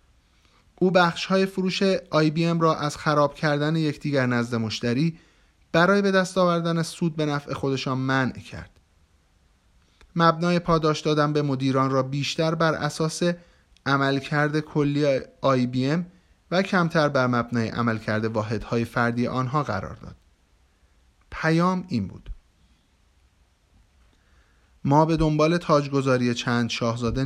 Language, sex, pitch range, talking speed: Persian, male, 100-165 Hz, 115 wpm